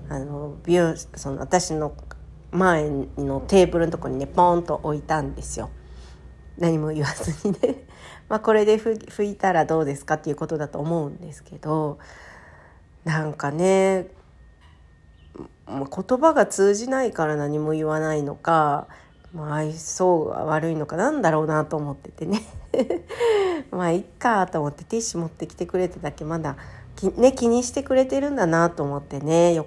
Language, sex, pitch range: Japanese, female, 145-200 Hz